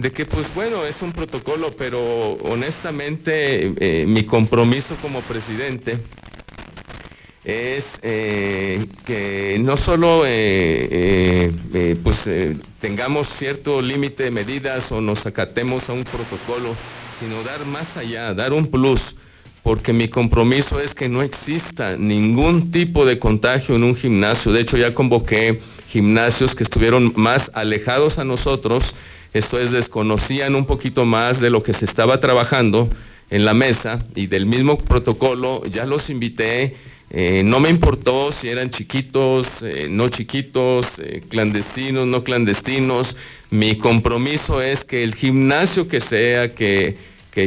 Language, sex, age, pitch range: Spanish, male, 50-69, 110-135 Hz